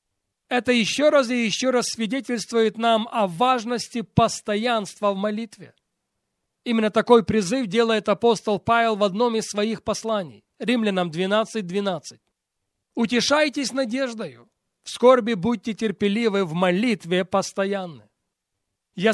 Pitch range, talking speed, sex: 195-235 Hz, 115 wpm, male